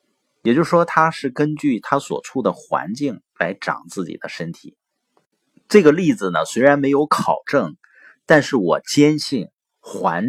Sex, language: male, Chinese